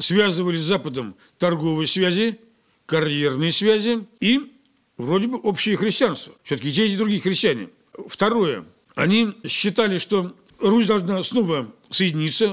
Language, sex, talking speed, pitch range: Russian, male, 125 wpm, 165-225 Hz